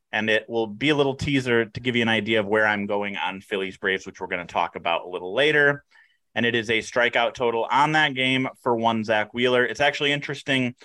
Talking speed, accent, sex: 245 wpm, American, male